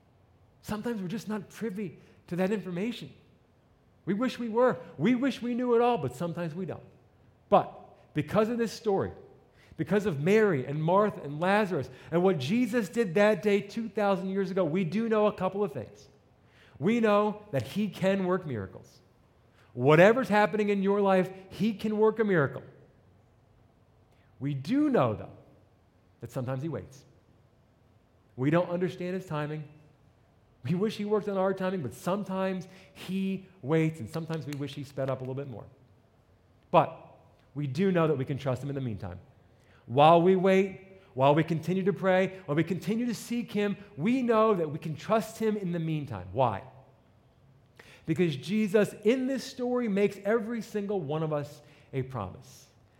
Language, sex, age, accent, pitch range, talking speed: English, male, 40-59, American, 125-205 Hz, 170 wpm